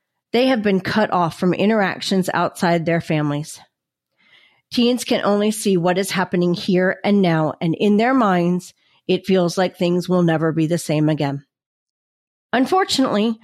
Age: 40-59